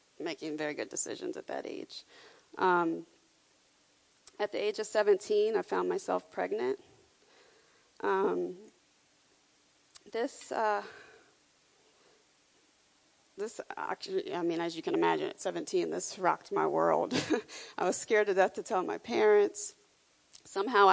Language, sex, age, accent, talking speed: English, female, 30-49, American, 125 wpm